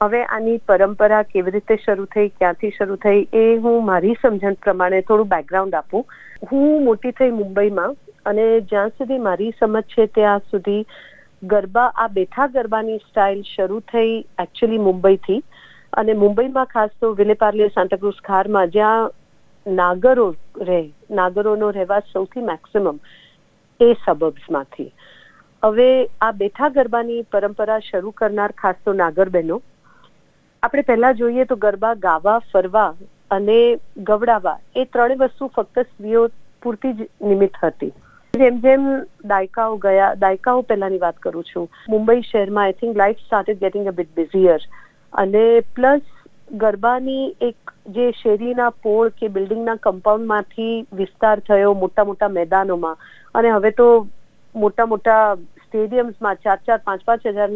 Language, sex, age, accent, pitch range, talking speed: Gujarati, female, 40-59, native, 195-230 Hz, 110 wpm